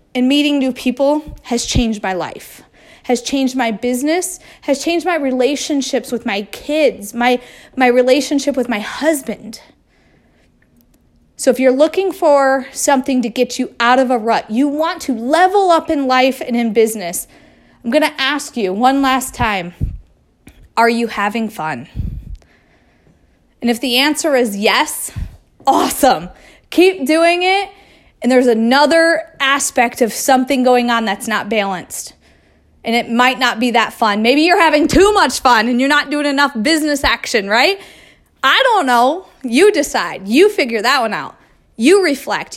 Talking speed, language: 160 wpm, English